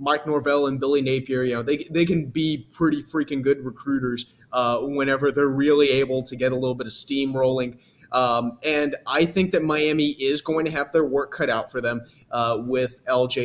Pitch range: 125-145 Hz